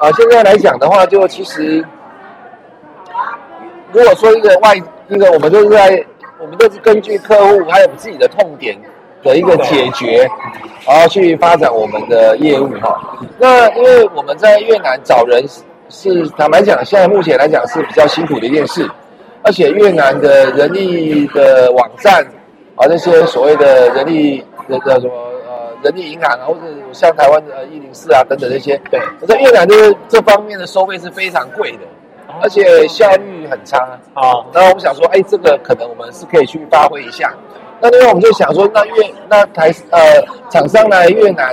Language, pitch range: Chinese, 150-230 Hz